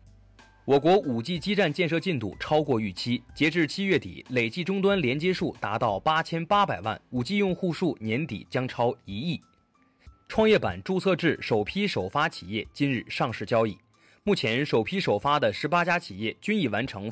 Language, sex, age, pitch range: Chinese, male, 20-39, 115-180 Hz